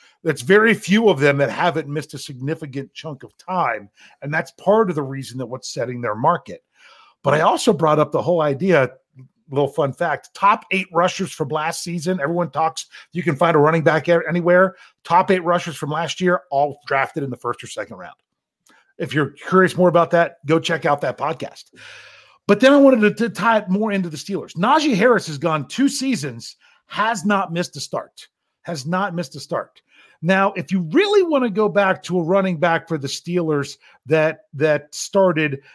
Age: 40-59